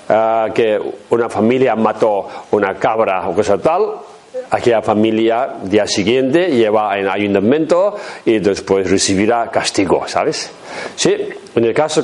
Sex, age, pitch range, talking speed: male, 40-59, 100-160 Hz, 125 wpm